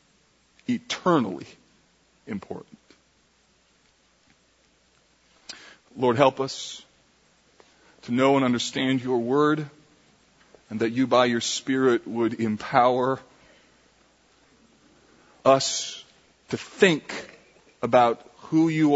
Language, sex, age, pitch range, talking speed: English, male, 40-59, 115-135 Hz, 80 wpm